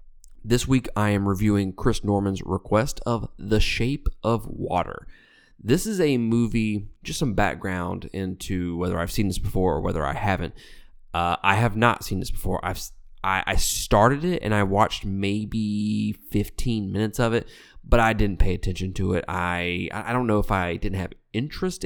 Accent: American